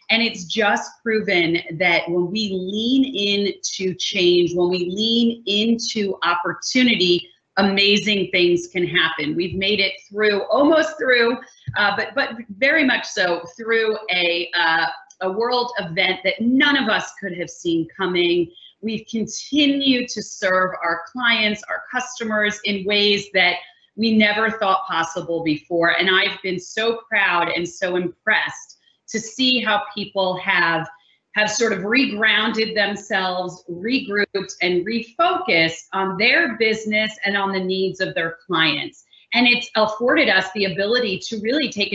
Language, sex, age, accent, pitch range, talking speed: English, female, 30-49, American, 180-230 Hz, 145 wpm